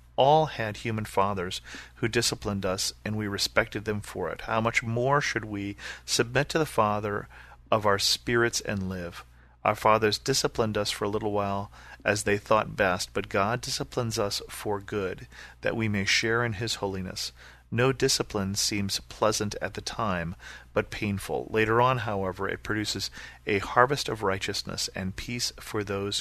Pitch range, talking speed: 95-115 Hz, 170 wpm